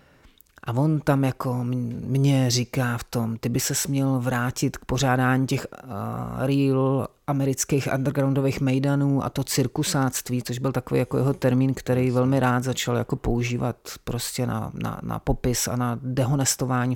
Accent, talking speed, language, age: native, 155 wpm, Czech, 30-49